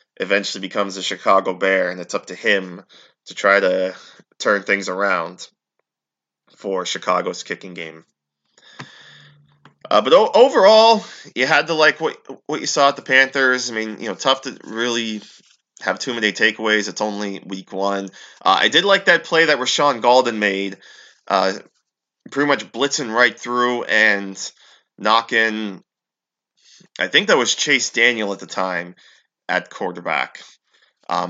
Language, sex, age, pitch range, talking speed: English, male, 20-39, 95-115 Hz, 155 wpm